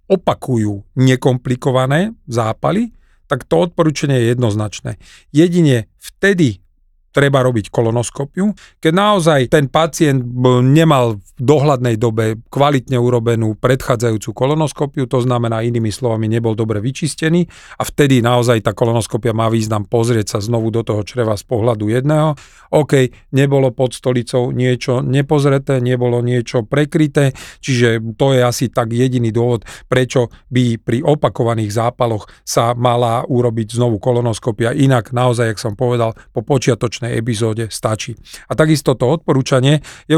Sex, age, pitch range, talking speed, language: male, 40-59, 115-140 Hz, 130 wpm, Slovak